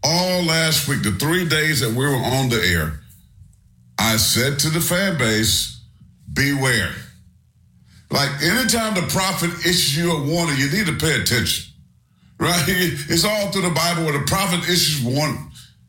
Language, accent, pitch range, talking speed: English, American, 110-155 Hz, 170 wpm